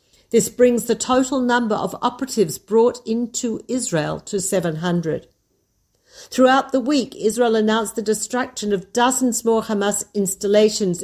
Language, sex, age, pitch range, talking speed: Hebrew, female, 50-69, 200-245 Hz, 130 wpm